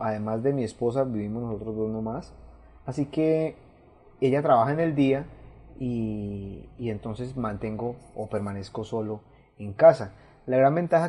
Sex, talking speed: male, 145 wpm